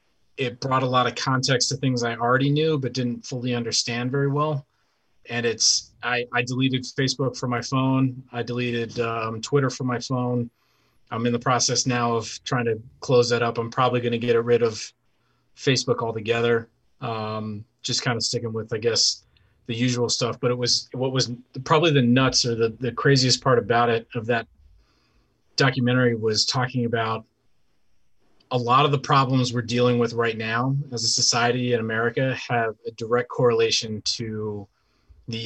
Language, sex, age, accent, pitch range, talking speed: English, male, 30-49, American, 115-130 Hz, 180 wpm